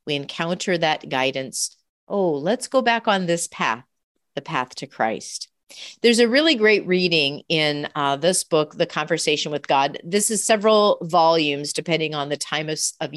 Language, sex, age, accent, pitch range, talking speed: English, female, 40-59, American, 150-205 Hz, 175 wpm